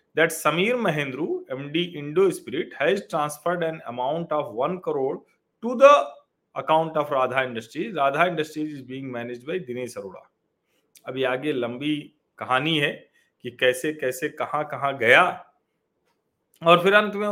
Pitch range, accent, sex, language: 135-195 Hz, native, male, Hindi